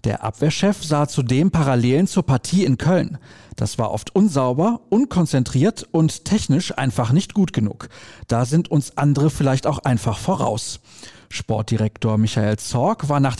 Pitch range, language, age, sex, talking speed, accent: 120-170 Hz, German, 40-59, male, 150 wpm, German